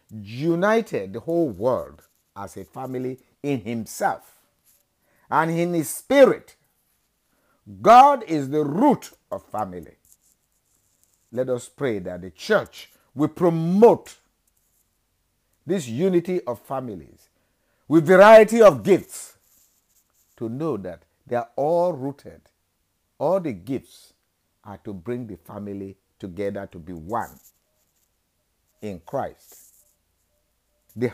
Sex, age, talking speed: male, 50-69, 110 wpm